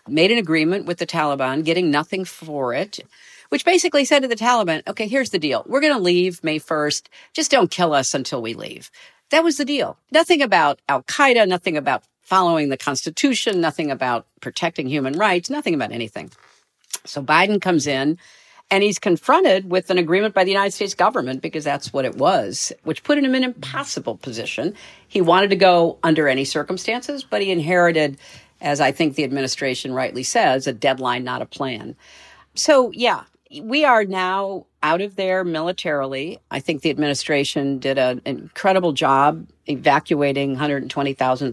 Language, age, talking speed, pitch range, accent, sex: English, 50-69, 175 wpm, 140-195 Hz, American, female